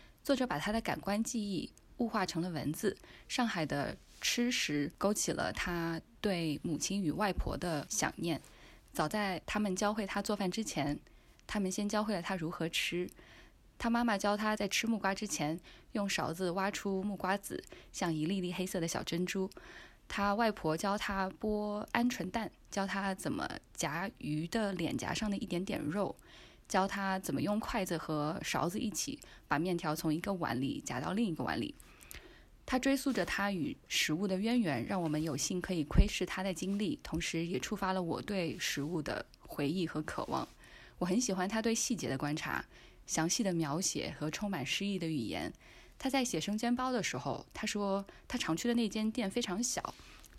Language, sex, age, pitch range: Chinese, female, 10-29, 170-215 Hz